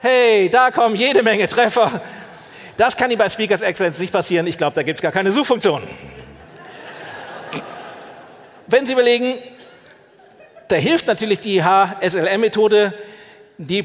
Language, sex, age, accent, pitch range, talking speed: German, male, 50-69, German, 165-230 Hz, 135 wpm